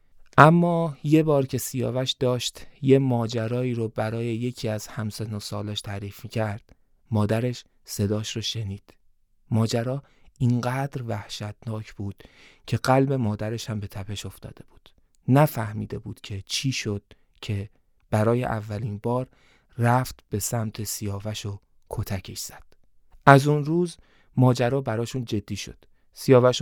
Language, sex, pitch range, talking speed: Persian, male, 110-140 Hz, 130 wpm